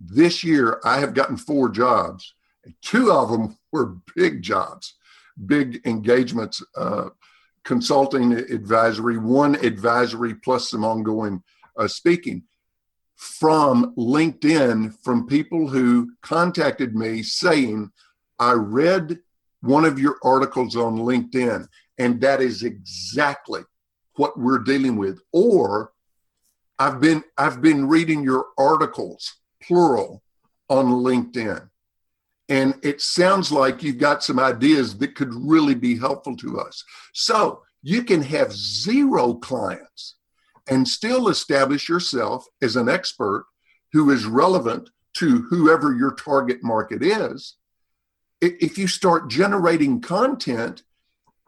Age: 50-69